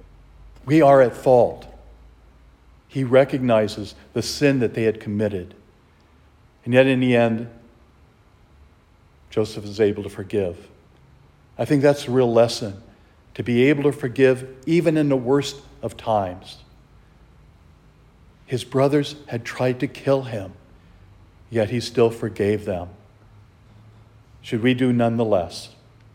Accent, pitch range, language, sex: American, 105-130 Hz, English, male